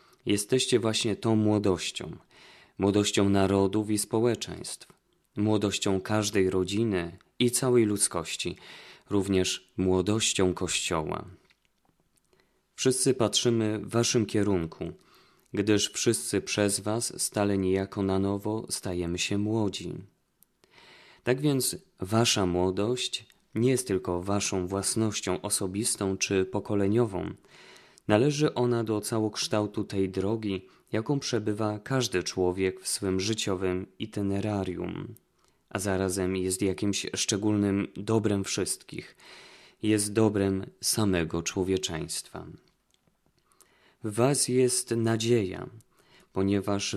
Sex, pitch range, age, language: male, 95-115 Hz, 20-39, Polish